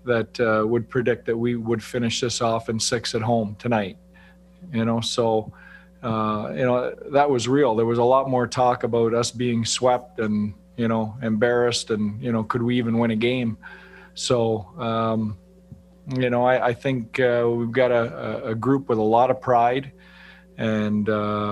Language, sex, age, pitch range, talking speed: English, male, 40-59, 110-125 Hz, 185 wpm